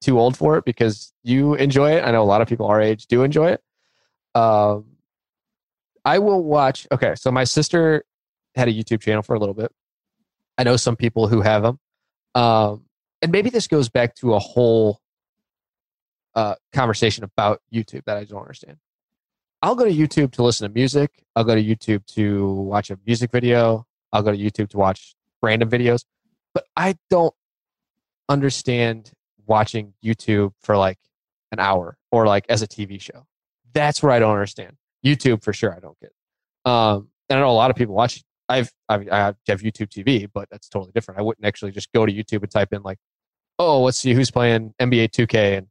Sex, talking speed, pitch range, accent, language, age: male, 195 wpm, 105-125 Hz, American, English, 20-39